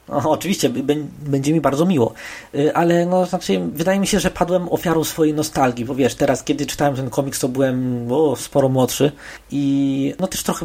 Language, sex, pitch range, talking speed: Polish, male, 130-165 Hz, 185 wpm